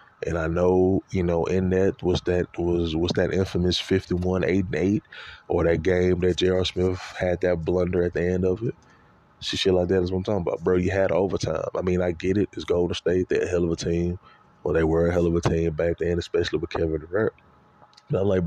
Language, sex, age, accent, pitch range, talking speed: English, male, 20-39, American, 90-115 Hz, 225 wpm